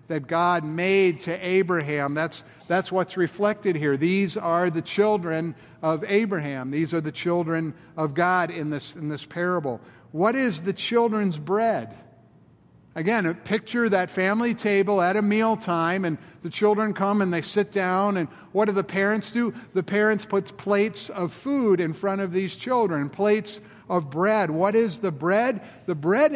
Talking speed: 165 wpm